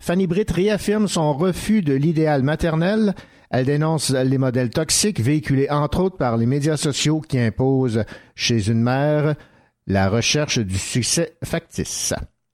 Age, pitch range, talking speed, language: 50-69, 125-165 Hz, 145 wpm, French